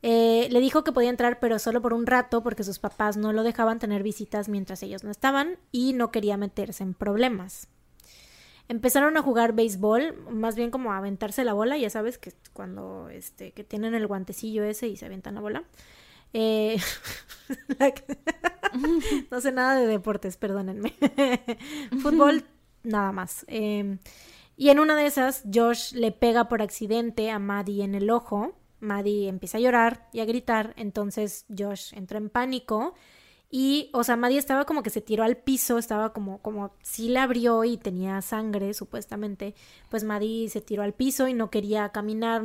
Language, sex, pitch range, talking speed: Spanish, female, 210-245 Hz, 170 wpm